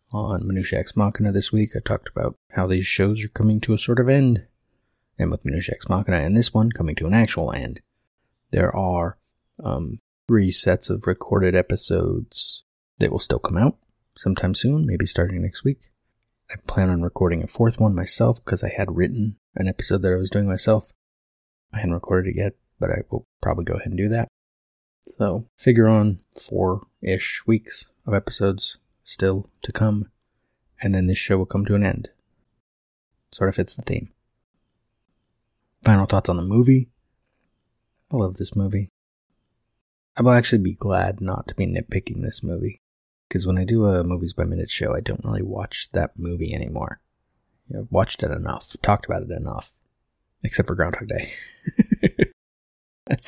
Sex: male